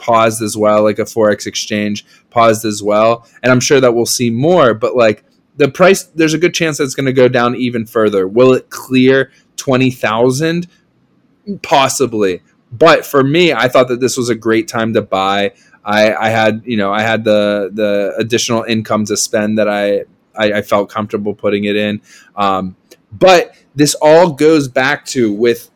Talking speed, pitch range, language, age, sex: 185 wpm, 110-145 Hz, English, 20-39, male